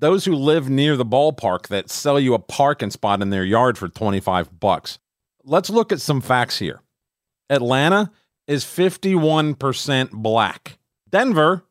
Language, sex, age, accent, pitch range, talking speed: English, male, 40-59, American, 110-150 Hz, 150 wpm